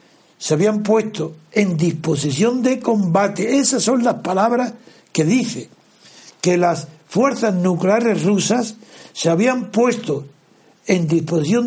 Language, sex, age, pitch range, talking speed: Spanish, male, 60-79, 165-235 Hz, 120 wpm